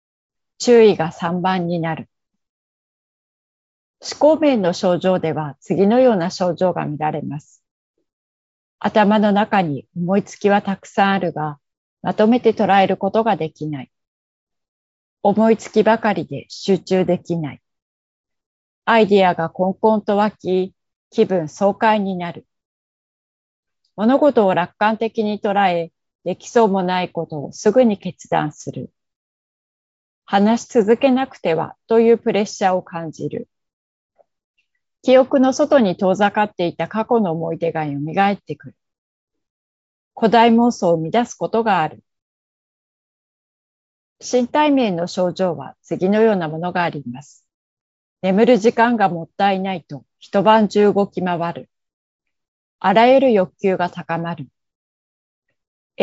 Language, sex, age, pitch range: Japanese, female, 40-59, 165-220 Hz